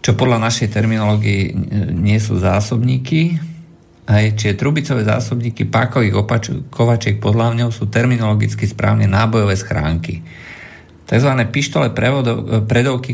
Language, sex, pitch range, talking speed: Slovak, male, 105-115 Hz, 110 wpm